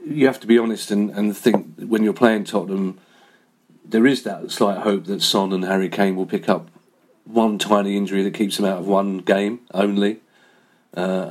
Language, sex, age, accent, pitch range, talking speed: English, male, 40-59, British, 100-120 Hz, 195 wpm